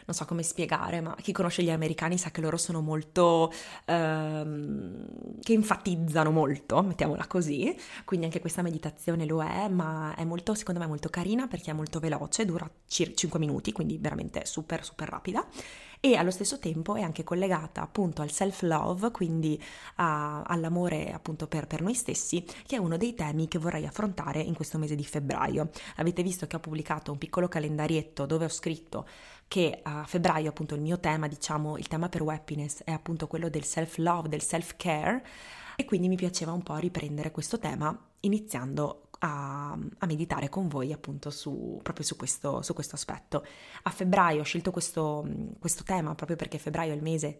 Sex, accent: female, native